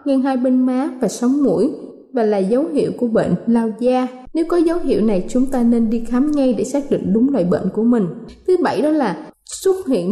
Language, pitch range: Vietnamese, 235-290 Hz